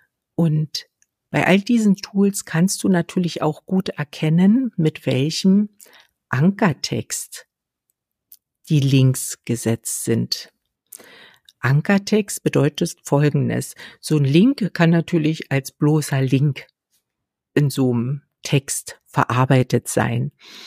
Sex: female